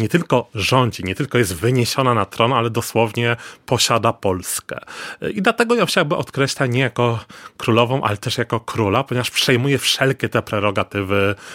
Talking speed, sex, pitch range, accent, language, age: 155 wpm, male, 105-125 Hz, native, Polish, 30-49